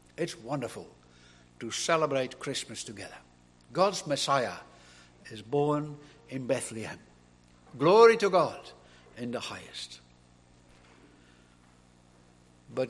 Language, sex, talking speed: English, male, 90 wpm